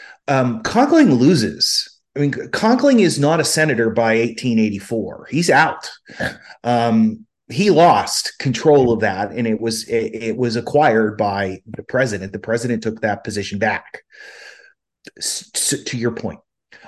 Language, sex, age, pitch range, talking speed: English, male, 30-49, 110-140 Hz, 140 wpm